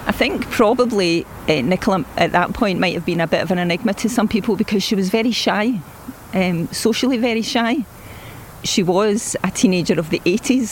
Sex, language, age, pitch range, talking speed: female, English, 40-59, 185-230 Hz, 195 wpm